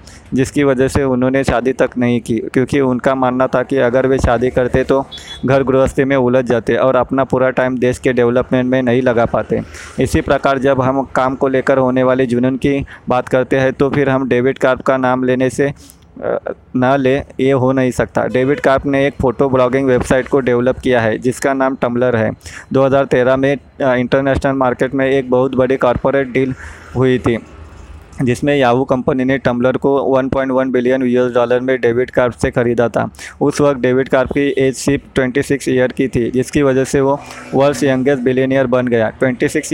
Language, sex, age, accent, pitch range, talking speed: Hindi, male, 20-39, native, 125-135 Hz, 190 wpm